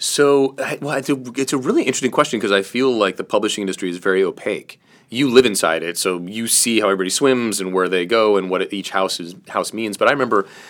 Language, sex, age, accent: English, male, 30-49, American